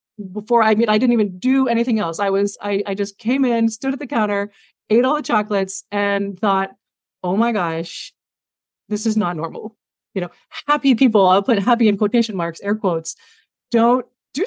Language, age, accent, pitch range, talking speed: English, 30-49, American, 195-235 Hz, 195 wpm